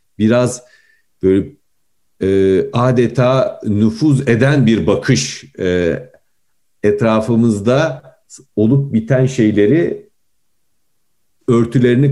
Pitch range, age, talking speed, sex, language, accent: 95-130 Hz, 50-69, 70 wpm, male, Turkish, native